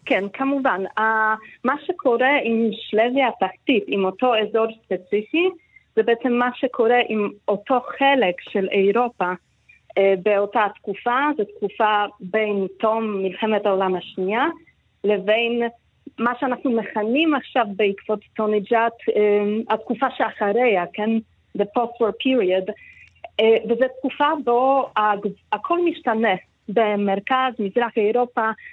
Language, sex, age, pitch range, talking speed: Hebrew, female, 40-59, 205-260 Hz, 115 wpm